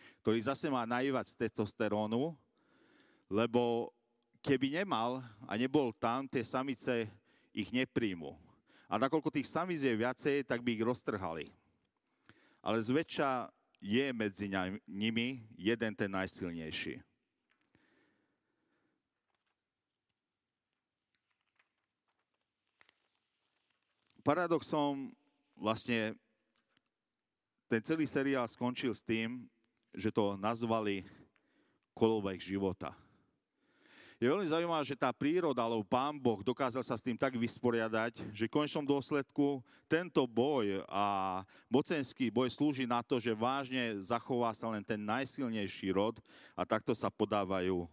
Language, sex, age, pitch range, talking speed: Slovak, male, 40-59, 110-145 Hz, 110 wpm